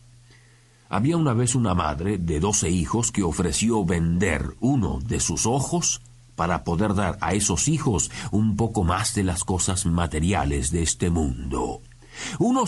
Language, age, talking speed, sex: Spanish, 50-69, 150 wpm, male